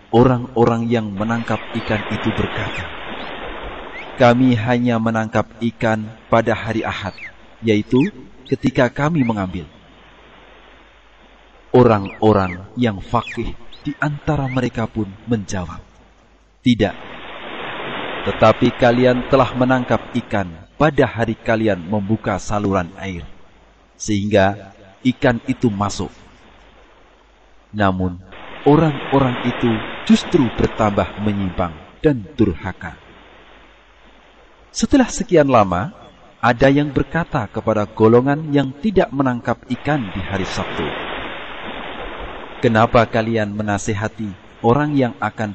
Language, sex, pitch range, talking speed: Indonesian, male, 105-130 Hz, 90 wpm